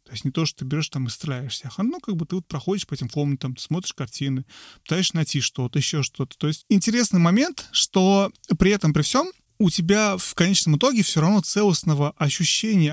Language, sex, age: Russian, male, 30-49